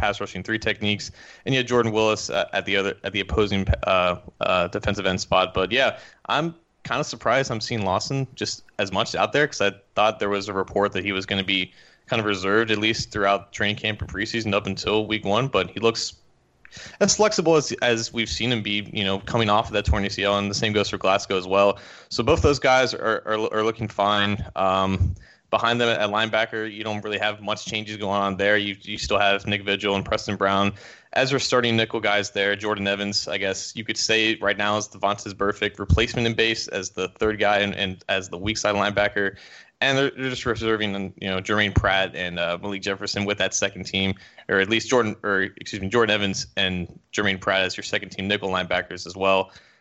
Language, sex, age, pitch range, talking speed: English, male, 20-39, 100-110 Hz, 230 wpm